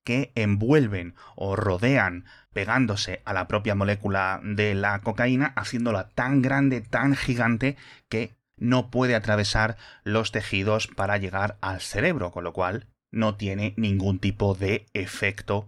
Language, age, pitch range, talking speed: Spanish, 30-49, 95-120 Hz, 140 wpm